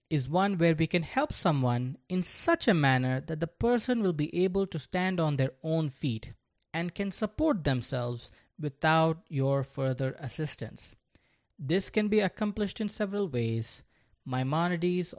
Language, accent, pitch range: English, Indian, 130-185 Hz